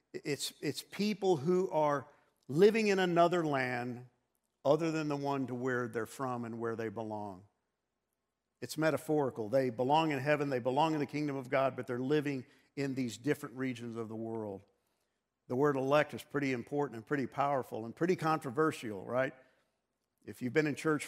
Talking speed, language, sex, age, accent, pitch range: 175 wpm, English, male, 50-69, American, 130-155 Hz